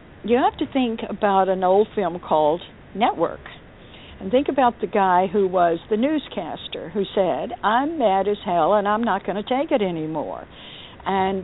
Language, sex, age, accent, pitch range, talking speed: English, female, 60-79, American, 185-235 Hz, 180 wpm